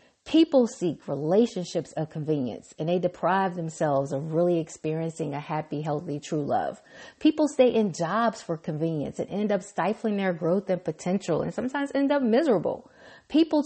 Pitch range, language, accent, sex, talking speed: 170-245 Hz, English, American, female, 165 wpm